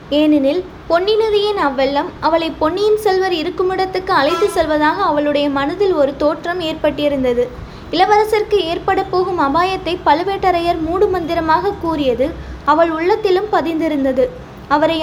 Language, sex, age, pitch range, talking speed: Tamil, female, 20-39, 300-380 Hz, 110 wpm